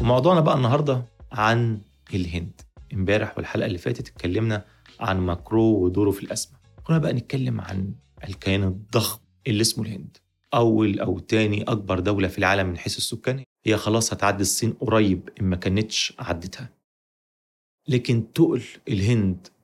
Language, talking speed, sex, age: Arabic, 140 wpm, male, 30-49